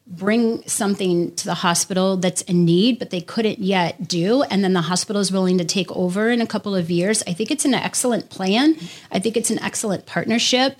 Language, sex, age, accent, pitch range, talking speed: English, female, 30-49, American, 175-200 Hz, 215 wpm